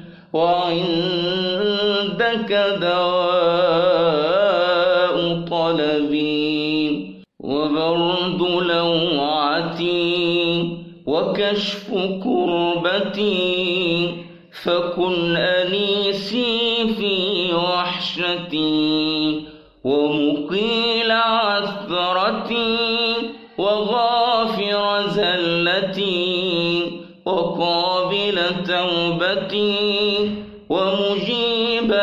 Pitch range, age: 170-205 Hz, 50-69